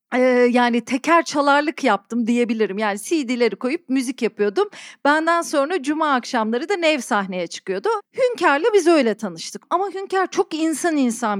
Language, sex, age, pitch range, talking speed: Turkish, female, 40-59, 250-320 Hz, 140 wpm